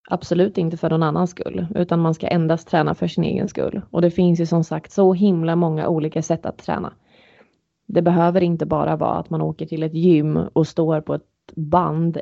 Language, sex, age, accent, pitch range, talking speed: Swedish, female, 30-49, native, 160-185 Hz, 215 wpm